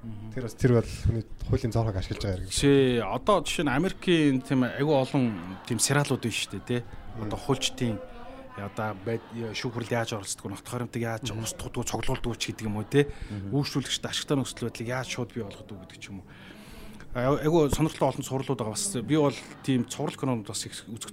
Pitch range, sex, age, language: 110-140 Hz, male, 30-49, Korean